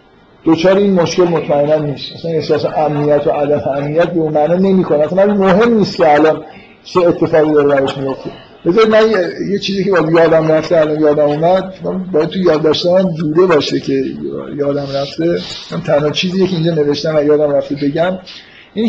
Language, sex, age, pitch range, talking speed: Persian, male, 50-69, 155-195 Hz, 175 wpm